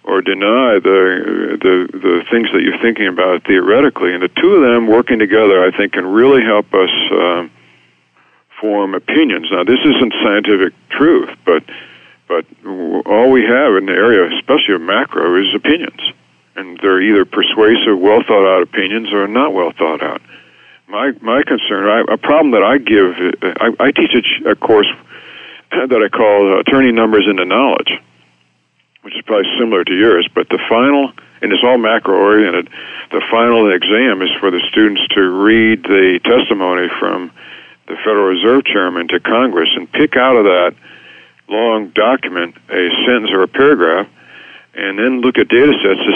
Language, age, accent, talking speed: English, 60-79, American, 170 wpm